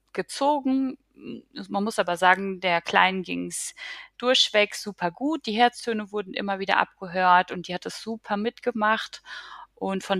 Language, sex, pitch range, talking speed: German, female, 175-225 Hz, 155 wpm